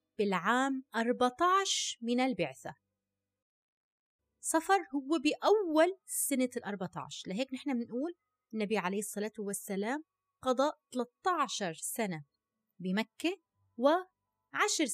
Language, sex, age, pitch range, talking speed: Arabic, female, 20-39, 205-290 Hz, 90 wpm